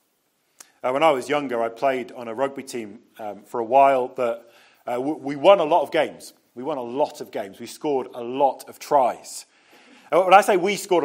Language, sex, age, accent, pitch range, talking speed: English, male, 30-49, British, 140-190 Hz, 210 wpm